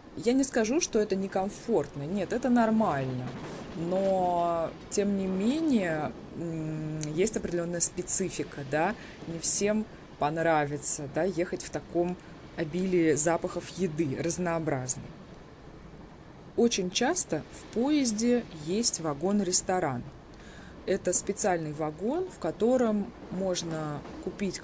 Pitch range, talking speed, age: 165-215 Hz, 100 wpm, 20-39